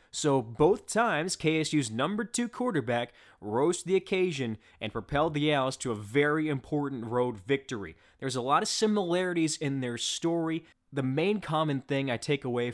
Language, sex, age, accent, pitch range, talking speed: English, male, 20-39, American, 115-150 Hz, 170 wpm